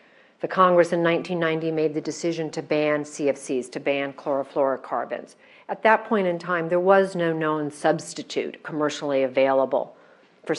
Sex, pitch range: female, 135-170 Hz